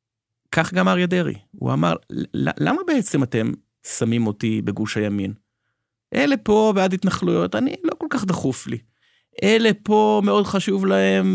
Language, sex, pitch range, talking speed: Hebrew, male, 110-165 Hz, 150 wpm